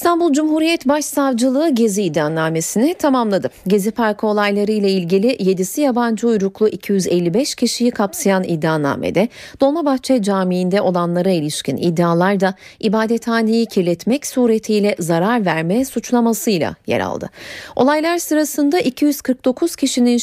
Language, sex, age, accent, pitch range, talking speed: Turkish, female, 40-59, native, 190-270 Hz, 105 wpm